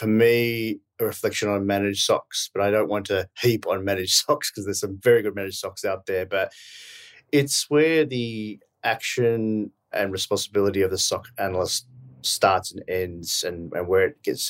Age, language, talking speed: 30-49, English, 180 wpm